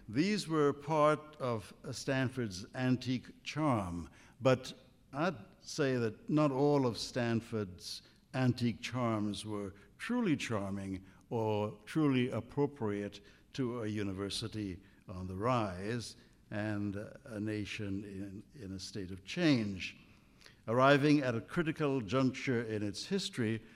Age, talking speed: 60-79, 115 wpm